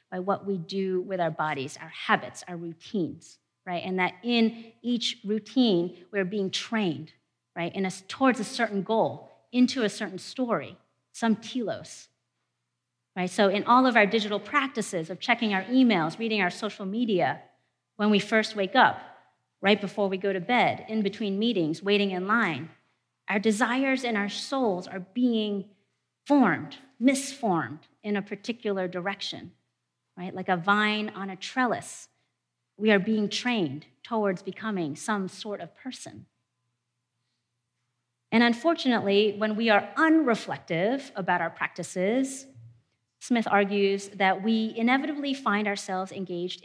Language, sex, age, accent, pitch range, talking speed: English, female, 40-59, American, 180-225 Hz, 145 wpm